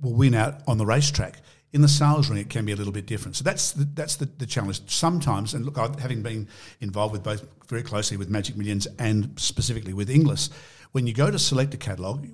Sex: male